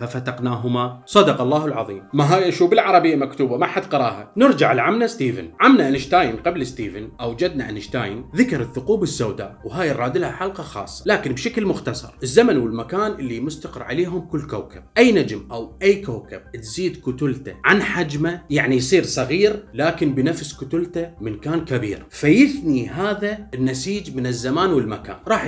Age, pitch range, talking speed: 30-49, 130-195 Hz, 150 wpm